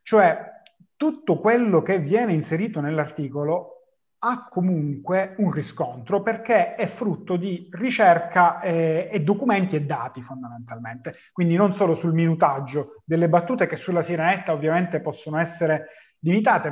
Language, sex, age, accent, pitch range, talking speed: Italian, male, 30-49, native, 160-200 Hz, 130 wpm